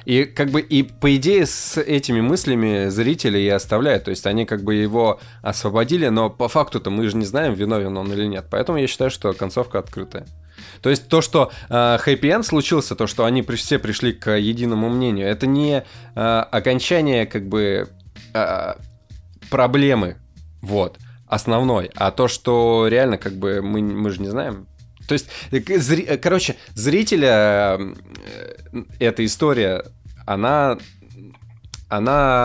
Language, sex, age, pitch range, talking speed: Russian, male, 20-39, 100-130 Hz, 150 wpm